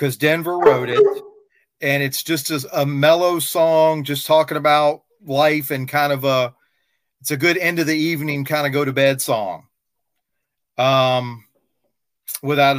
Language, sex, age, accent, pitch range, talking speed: English, male, 40-59, American, 130-160 Hz, 160 wpm